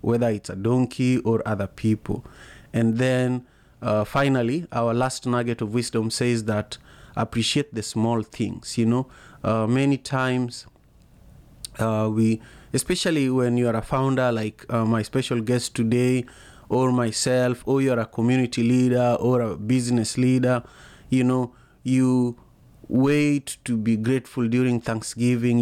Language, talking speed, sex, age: English, 145 wpm, male, 30-49